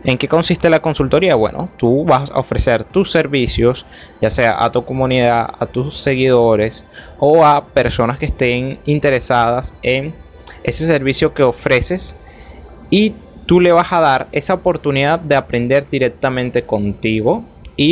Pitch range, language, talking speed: 110-145 Hz, Spanish, 145 wpm